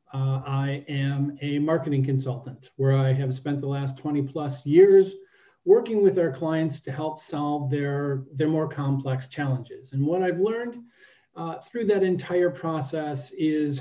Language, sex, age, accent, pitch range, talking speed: English, male, 40-59, American, 135-170 Hz, 160 wpm